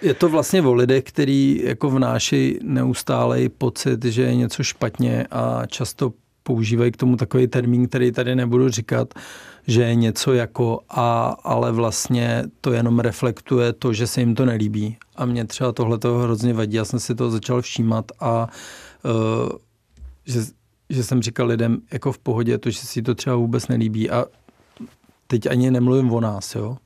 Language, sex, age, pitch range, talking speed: Czech, male, 40-59, 115-125 Hz, 170 wpm